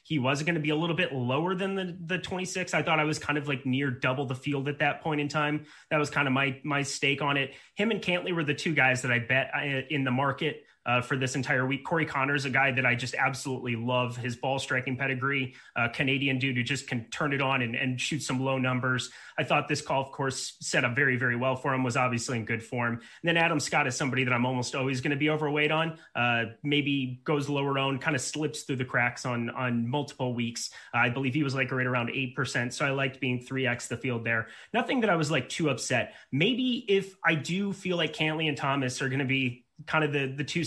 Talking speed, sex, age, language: 260 wpm, male, 30-49, English